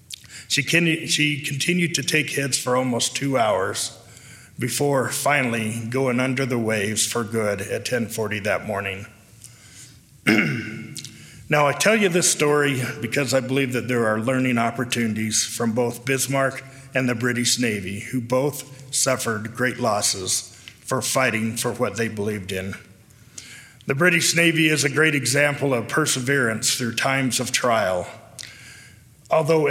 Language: English